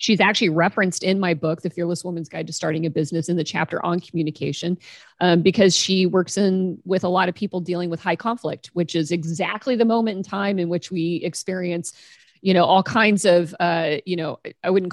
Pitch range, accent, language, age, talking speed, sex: 170-200 Hz, American, English, 40-59, 215 wpm, female